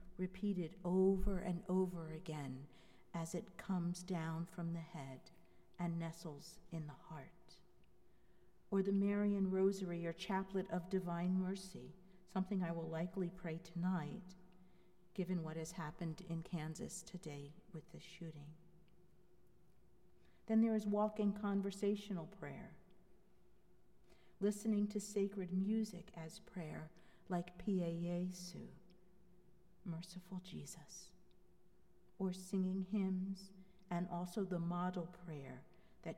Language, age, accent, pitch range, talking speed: English, 50-69, American, 170-195 Hz, 115 wpm